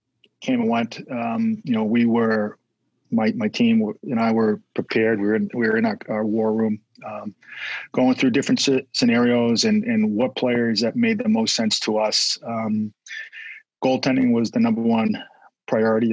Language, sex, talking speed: English, male, 185 wpm